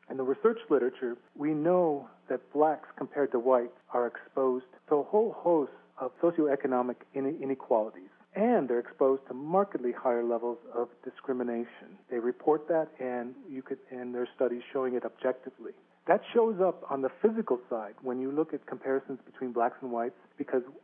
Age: 40-59